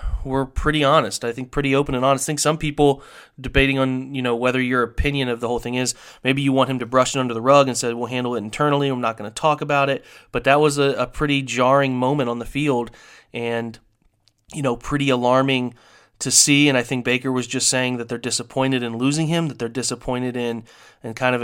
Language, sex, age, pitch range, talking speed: English, male, 30-49, 120-135 Hz, 240 wpm